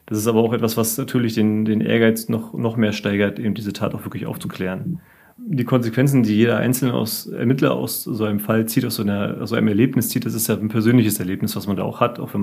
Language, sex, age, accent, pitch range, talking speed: German, male, 30-49, German, 105-115 Hz, 250 wpm